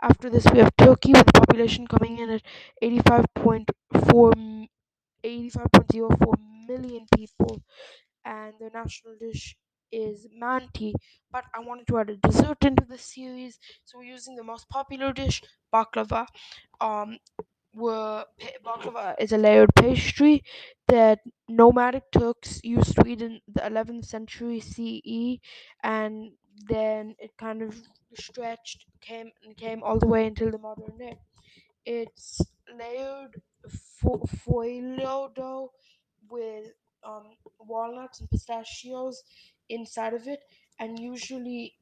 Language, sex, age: English, female, 10-29